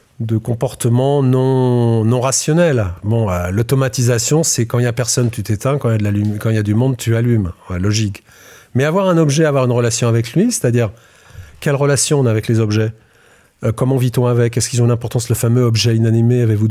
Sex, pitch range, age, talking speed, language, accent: male, 105-130 Hz, 40-59, 215 wpm, French, French